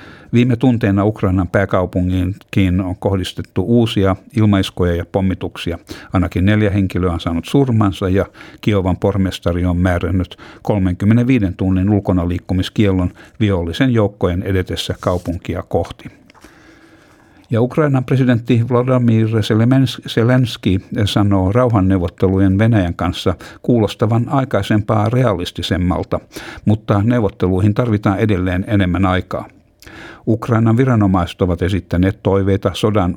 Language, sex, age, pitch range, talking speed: Finnish, male, 60-79, 95-110 Hz, 95 wpm